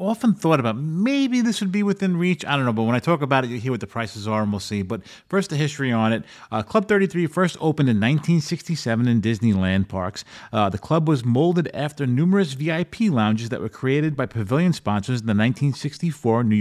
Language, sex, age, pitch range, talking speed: English, male, 30-49, 115-170 Hz, 225 wpm